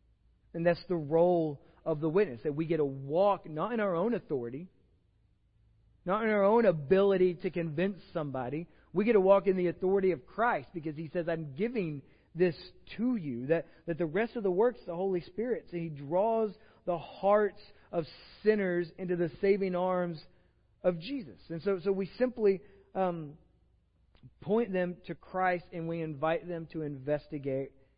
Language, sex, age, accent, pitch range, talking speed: English, male, 40-59, American, 125-175 Hz, 175 wpm